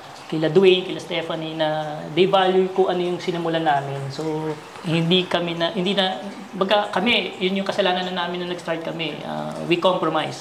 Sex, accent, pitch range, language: female, native, 155-185 Hz, Filipino